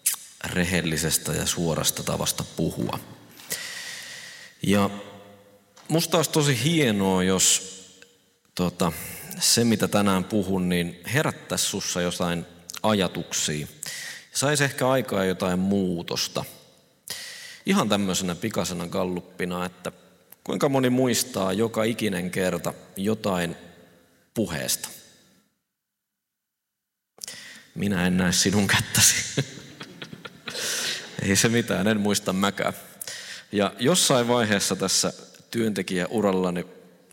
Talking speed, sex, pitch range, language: 90 wpm, male, 90-115 Hz, Finnish